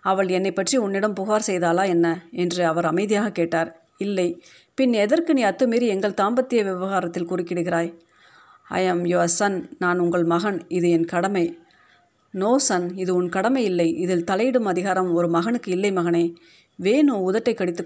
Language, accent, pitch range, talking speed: Tamil, native, 175-230 Hz, 150 wpm